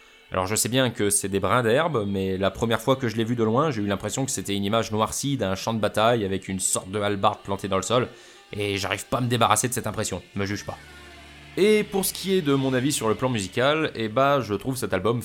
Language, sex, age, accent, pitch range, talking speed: French, male, 20-39, French, 100-135 Hz, 275 wpm